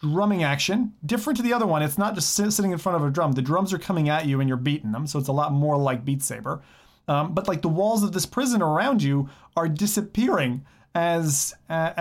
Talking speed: 240 wpm